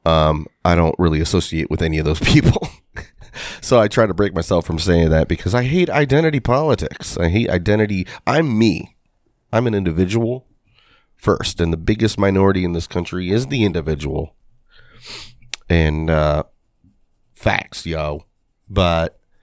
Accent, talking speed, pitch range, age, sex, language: American, 150 wpm, 80-95 Hz, 30-49, male, English